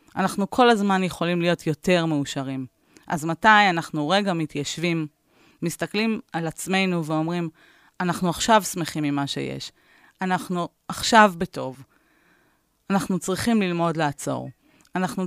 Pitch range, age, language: 165-200 Hz, 30-49, Hebrew